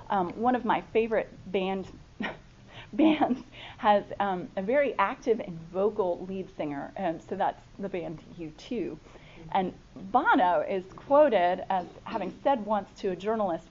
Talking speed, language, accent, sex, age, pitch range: 145 wpm, English, American, female, 30-49, 180-220 Hz